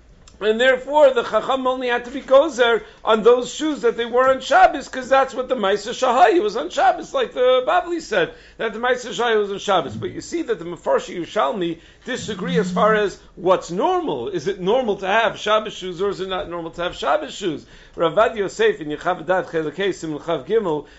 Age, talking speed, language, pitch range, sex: 50-69, 200 wpm, English, 165-240 Hz, male